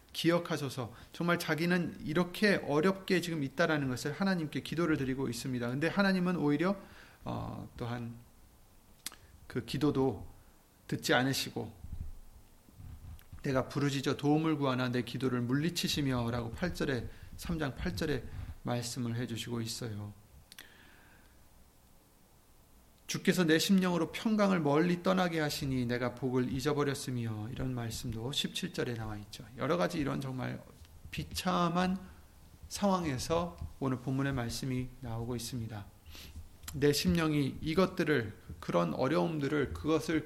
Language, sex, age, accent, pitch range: Korean, male, 30-49, native, 120-175 Hz